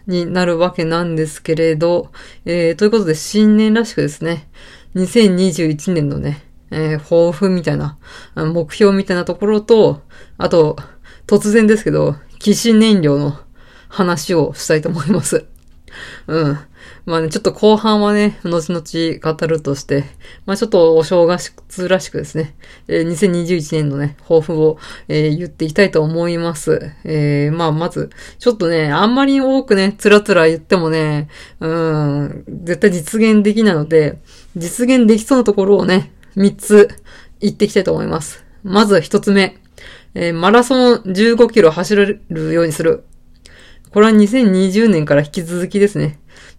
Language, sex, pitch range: Japanese, female, 160-210 Hz